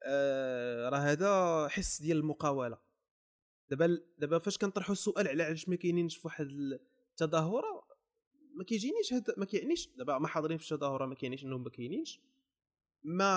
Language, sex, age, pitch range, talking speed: Arabic, male, 20-39, 140-190 Hz, 140 wpm